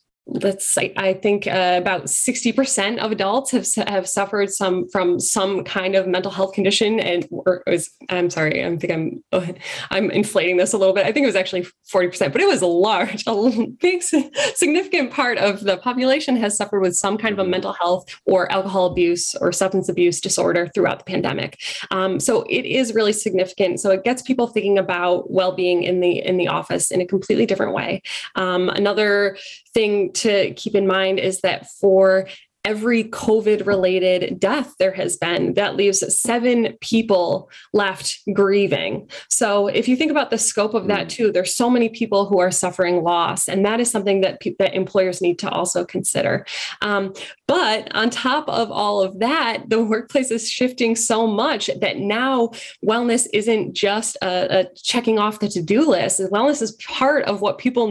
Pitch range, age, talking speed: 185-225 Hz, 20-39, 185 wpm